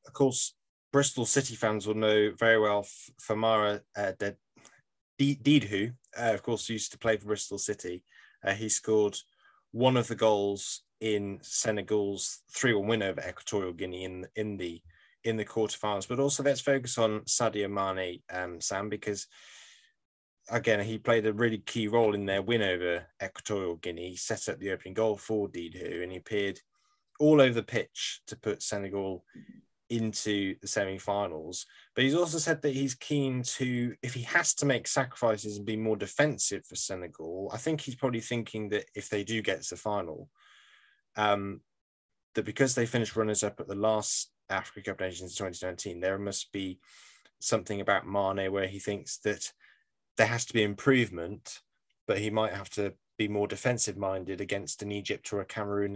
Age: 20-39